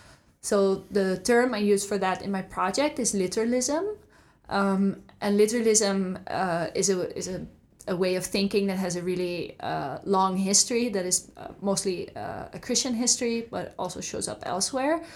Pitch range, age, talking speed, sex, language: 190-215 Hz, 20-39, 175 wpm, female, English